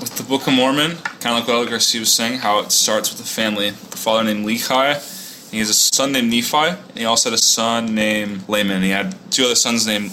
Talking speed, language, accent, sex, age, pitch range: 255 wpm, English, American, male, 20-39, 105-140 Hz